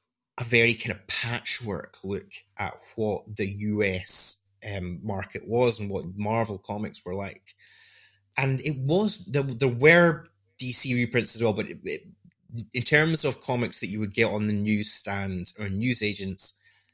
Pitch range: 105-130 Hz